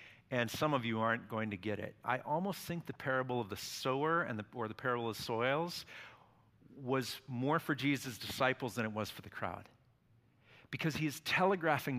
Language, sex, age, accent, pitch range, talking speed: English, male, 50-69, American, 110-140 Hz, 190 wpm